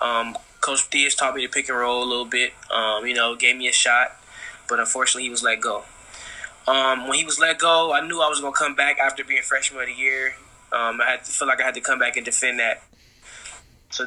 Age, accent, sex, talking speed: 10-29, American, male, 255 wpm